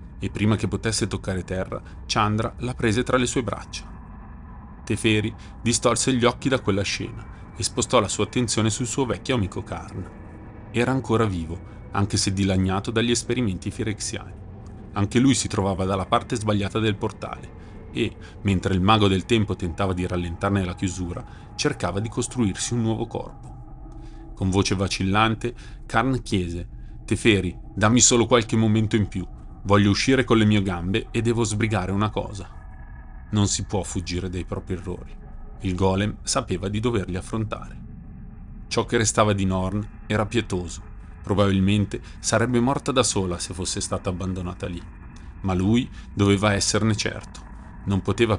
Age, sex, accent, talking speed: 30-49, male, native, 155 wpm